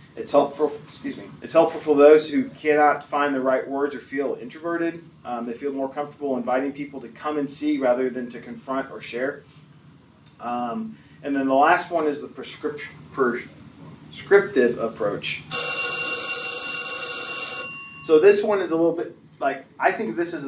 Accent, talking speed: American, 165 wpm